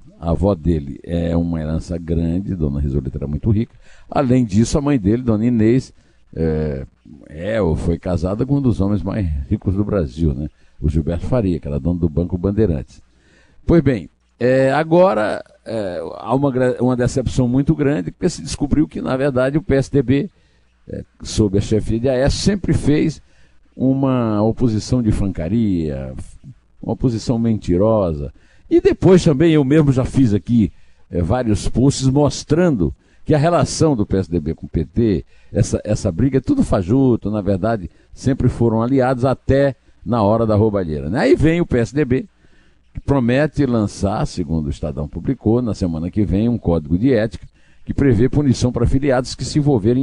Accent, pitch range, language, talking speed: Brazilian, 85-130 Hz, Portuguese, 170 wpm